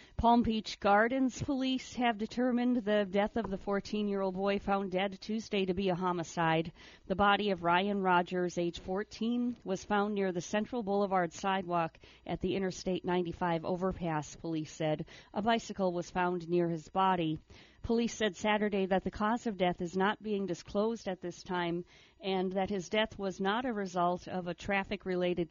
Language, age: English, 50-69